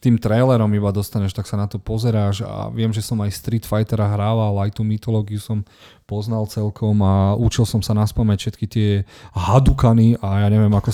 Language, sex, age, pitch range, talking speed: Slovak, male, 30-49, 100-120 Hz, 190 wpm